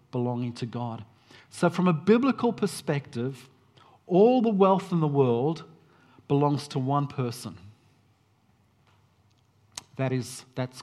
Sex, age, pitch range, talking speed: male, 50-69, 120-165 Hz, 110 wpm